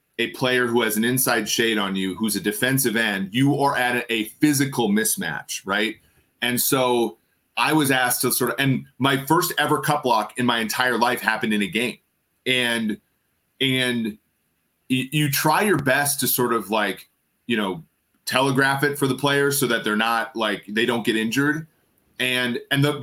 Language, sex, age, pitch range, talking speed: English, male, 30-49, 115-145 Hz, 185 wpm